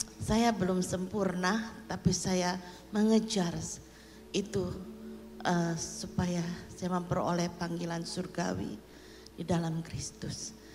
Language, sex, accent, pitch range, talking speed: Indonesian, female, native, 170-200 Hz, 90 wpm